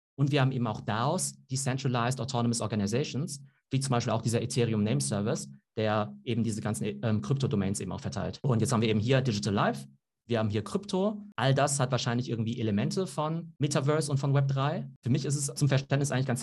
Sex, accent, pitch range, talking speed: male, German, 115-140 Hz, 210 wpm